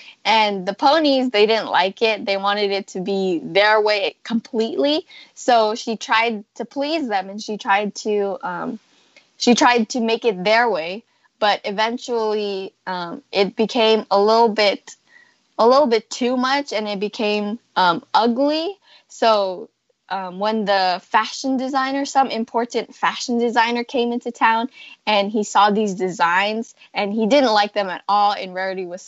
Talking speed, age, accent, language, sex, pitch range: 165 wpm, 10-29, American, English, female, 200-245 Hz